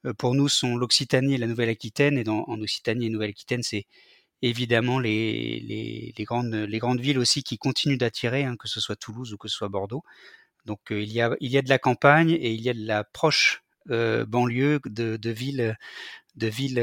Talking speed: 220 wpm